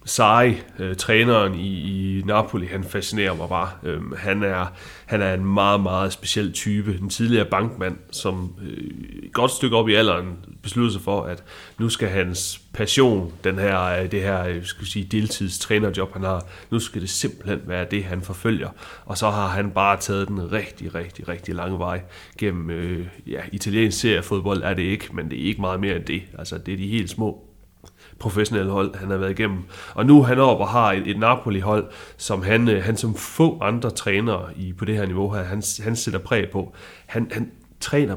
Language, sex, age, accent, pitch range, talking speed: Danish, male, 30-49, native, 95-110 Hz, 195 wpm